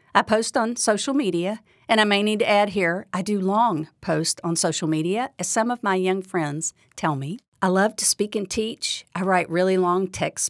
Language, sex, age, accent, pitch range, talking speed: English, female, 50-69, American, 180-235 Hz, 215 wpm